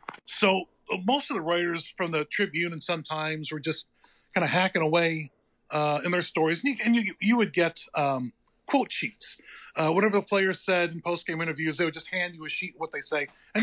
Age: 30-49